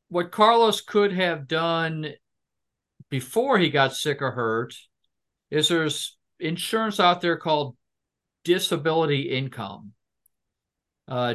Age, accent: 50-69, American